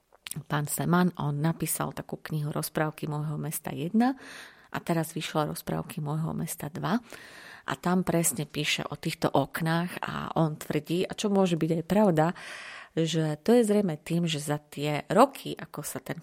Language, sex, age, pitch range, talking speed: Slovak, female, 30-49, 150-190 Hz, 165 wpm